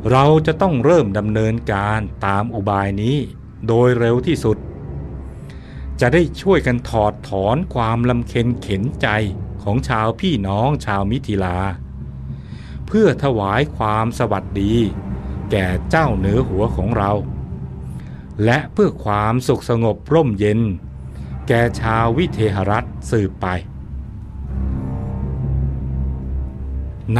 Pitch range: 90-120 Hz